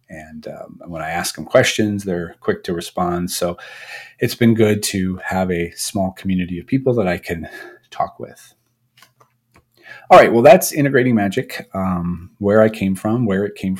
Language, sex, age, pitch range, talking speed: English, male, 30-49, 90-115 Hz, 180 wpm